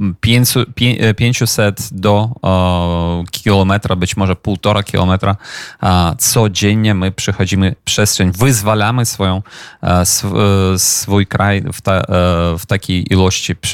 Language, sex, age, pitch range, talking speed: Polish, male, 30-49, 95-110 Hz, 90 wpm